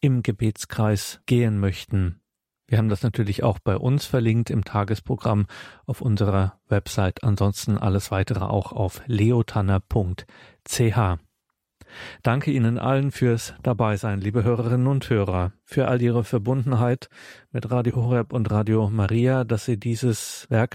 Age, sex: 40-59, male